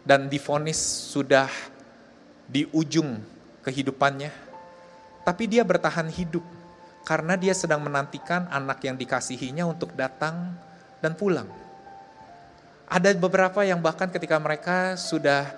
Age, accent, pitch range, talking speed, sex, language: 30-49, native, 145-190 Hz, 110 wpm, male, Indonesian